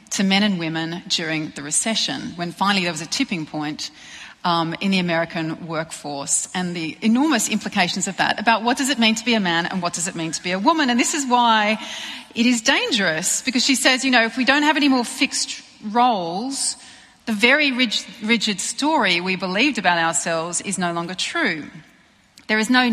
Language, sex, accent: English, female, Australian